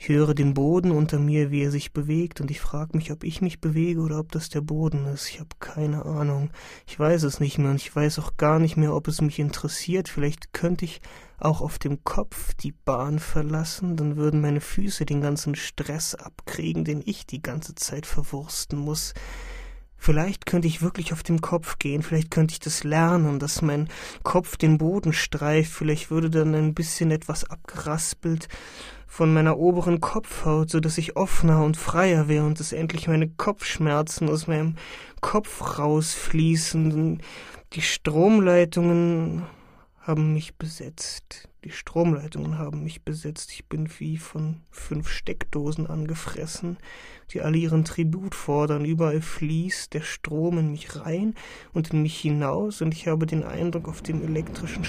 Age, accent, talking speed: 30-49, German, 170 wpm